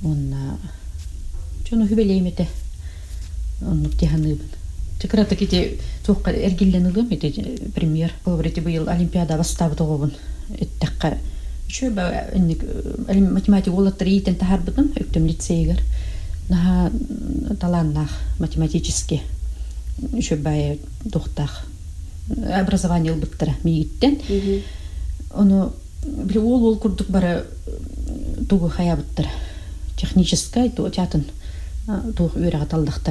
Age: 40-59